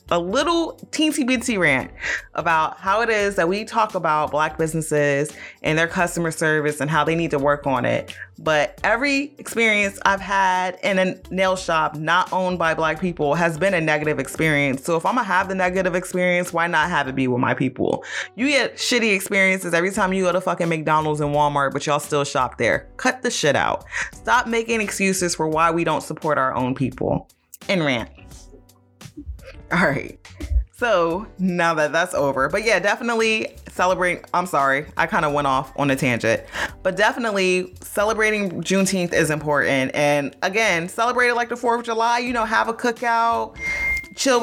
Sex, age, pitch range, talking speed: female, 20-39, 150-205 Hz, 190 wpm